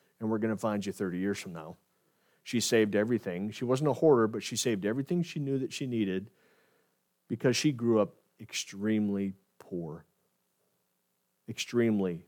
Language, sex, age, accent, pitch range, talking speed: English, male, 40-59, American, 105-170 Hz, 160 wpm